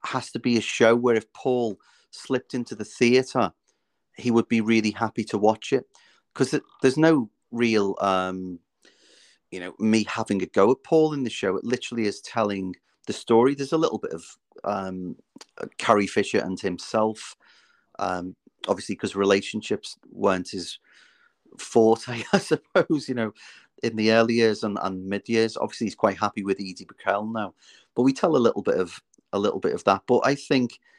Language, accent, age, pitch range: English, British, 30-49, 105-125 Hz